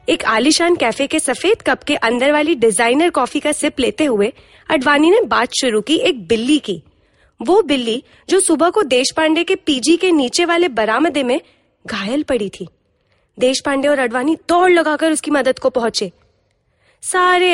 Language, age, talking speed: Hindi, 20-39, 170 wpm